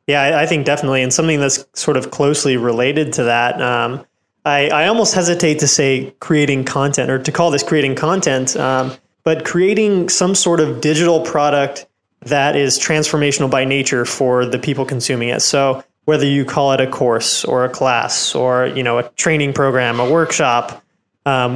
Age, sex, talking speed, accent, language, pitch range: 20-39, male, 185 wpm, American, English, 130-155 Hz